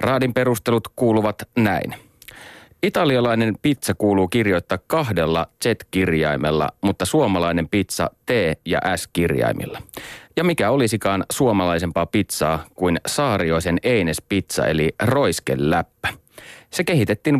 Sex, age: male, 30-49